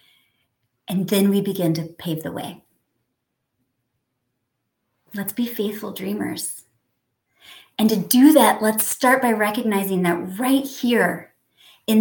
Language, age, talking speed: English, 30-49, 120 wpm